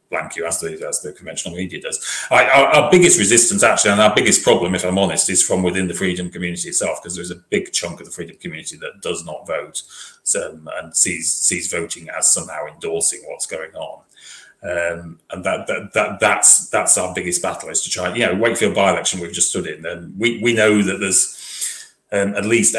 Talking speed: 220 wpm